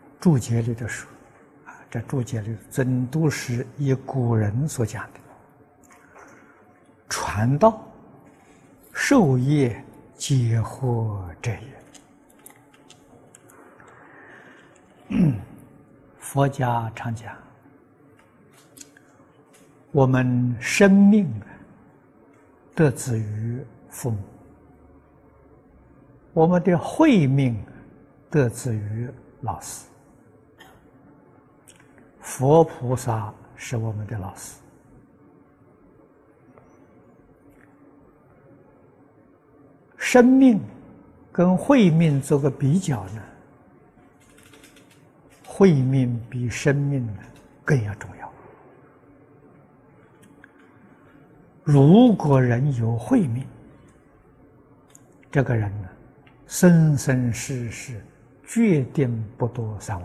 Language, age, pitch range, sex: Chinese, 60-79, 115-145 Hz, male